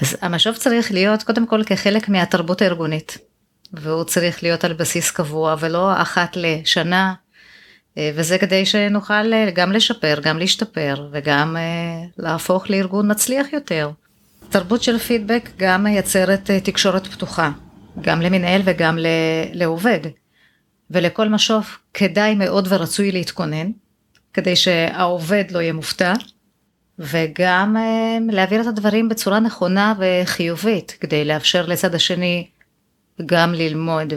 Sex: female